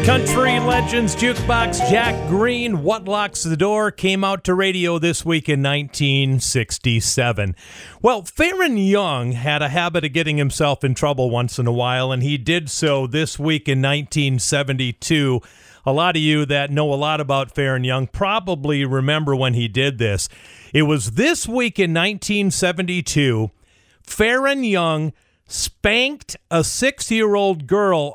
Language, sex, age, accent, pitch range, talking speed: English, male, 40-59, American, 135-185 Hz, 145 wpm